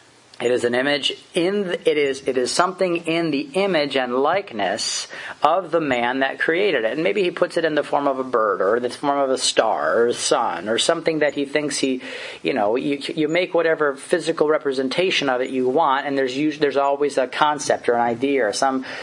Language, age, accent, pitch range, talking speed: English, 40-59, American, 125-165 Hz, 225 wpm